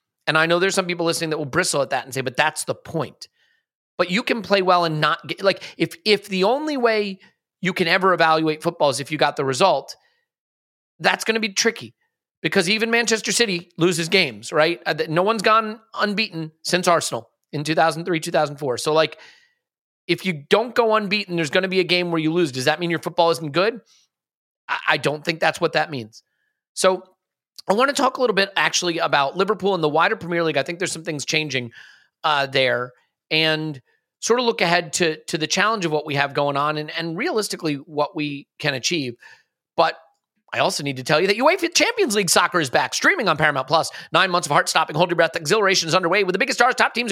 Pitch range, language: 155-210 Hz, English